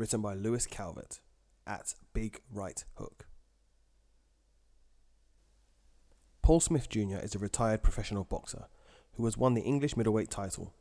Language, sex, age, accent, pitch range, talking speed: English, male, 20-39, British, 90-110 Hz, 130 wpm